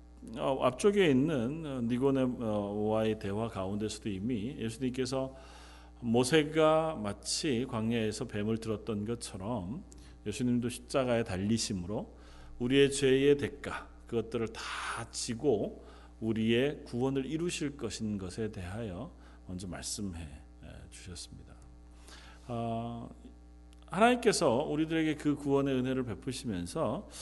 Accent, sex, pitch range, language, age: native, male, 80-130 Hz, Korean, 40-59